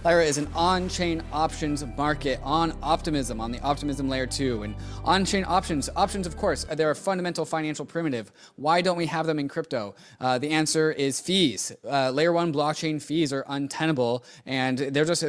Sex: male